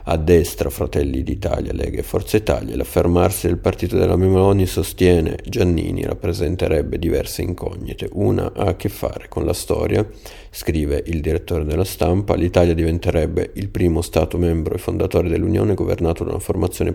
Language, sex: Italian, male